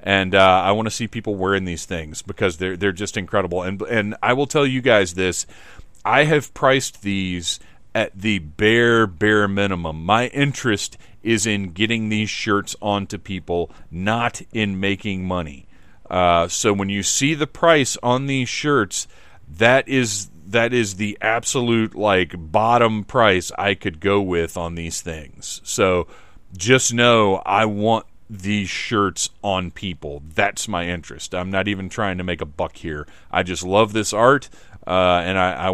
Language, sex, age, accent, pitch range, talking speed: English, male, 40-59, American, 90-115 Hz, 170 wpm